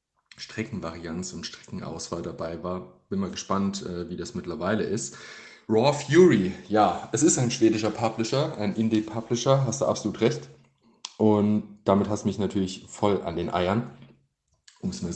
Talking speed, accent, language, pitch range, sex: 155 wpm, German, German, 95-120 Hz, male